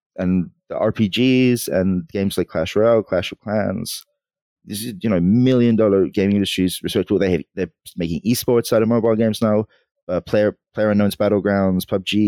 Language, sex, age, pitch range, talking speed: English, male, 20-39, 90-120 Hz, 175 wpm